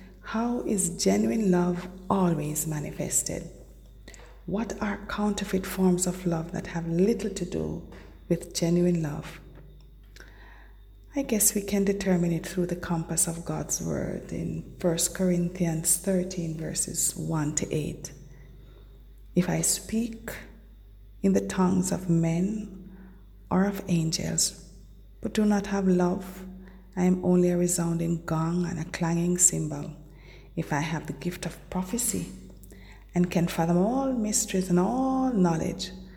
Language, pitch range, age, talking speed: English, 165-190 Hz, 30-49, 135 wpm